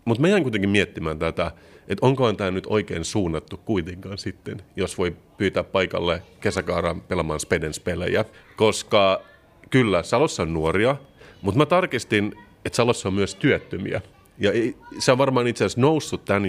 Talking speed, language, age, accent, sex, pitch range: 165 wpm, Finnish, 30-49, native, male, 90-110 Hz